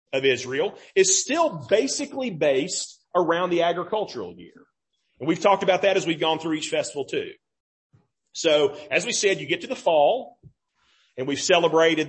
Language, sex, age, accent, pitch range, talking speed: English, male, 40-59, American, 155-205 Hz, 170 wpm